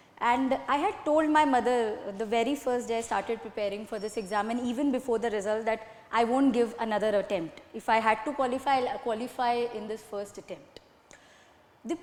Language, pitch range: Hindi, 230-290 Hz